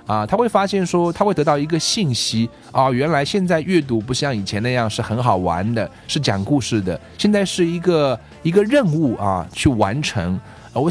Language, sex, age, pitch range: Chinese, male, 20-39, 110-150 Hz